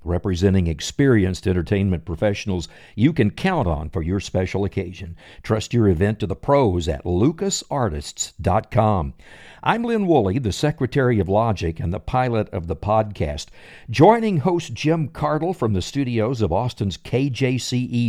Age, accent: 60-79, American